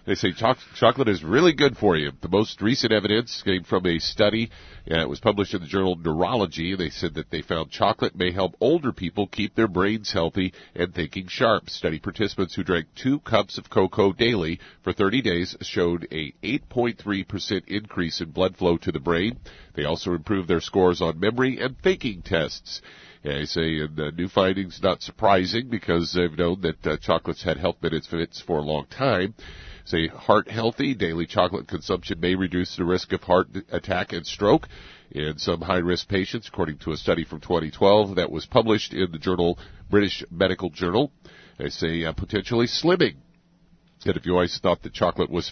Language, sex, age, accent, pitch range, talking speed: English, male, 50-69, American, 85-100 Hz, 185 wpm